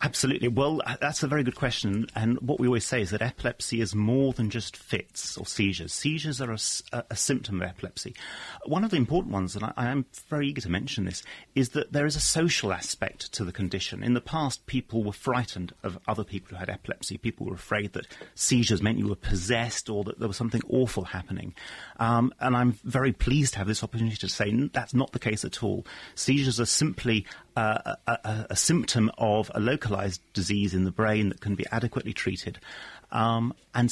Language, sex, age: English, male, 40-59